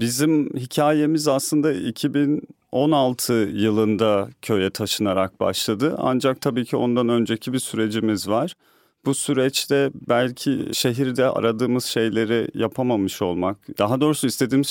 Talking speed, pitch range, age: 110 wpm, 110-145 Hz, 40-59